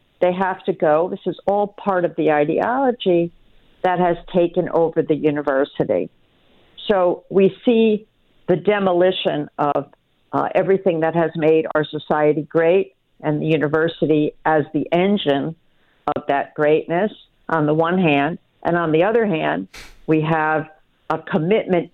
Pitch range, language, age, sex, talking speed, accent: 155-190 Hz, English, 50-69, female, 145 wpm, American